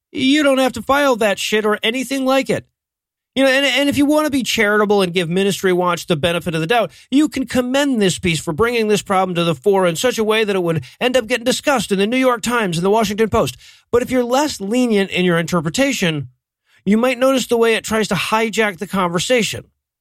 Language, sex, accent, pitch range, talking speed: English, male, American, 180-245 Hz, 245 wpm